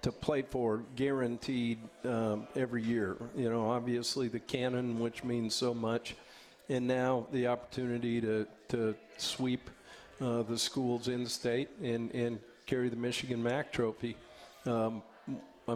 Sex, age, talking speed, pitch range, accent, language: male, 50-69, 140 wpm, 115-130 Hz, American, English